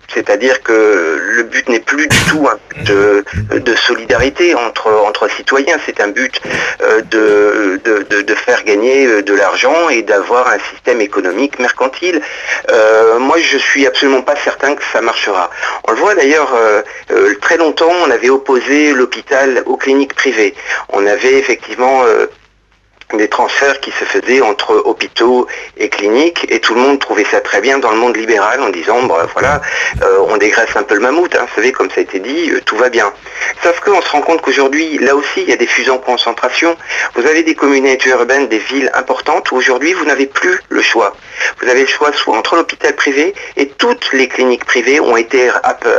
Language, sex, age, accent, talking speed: French, male, 50-69, French, 200 wpm